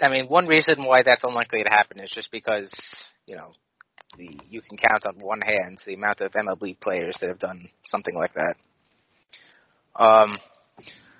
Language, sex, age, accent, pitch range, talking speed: English, male, 30-49, American, 110-135 Hz, 170 wpm